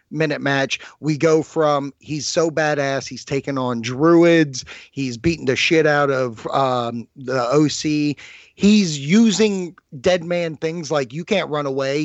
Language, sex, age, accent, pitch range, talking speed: English, male, 30-49, American, 135-165 Hz, 155 wpm